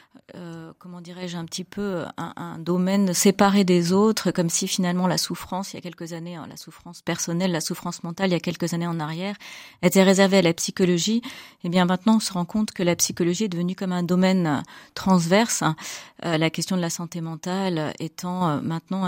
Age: 30-49